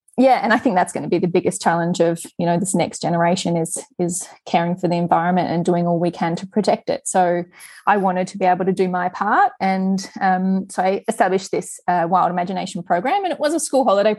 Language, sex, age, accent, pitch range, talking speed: English, female, 20-39, Australian, 170-225 Hz, 240 wpm